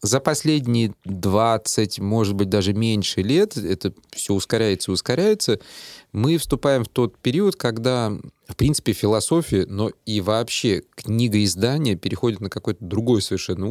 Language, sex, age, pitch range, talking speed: Russian, male, 30-49, 100-125 Hz, 135 wpm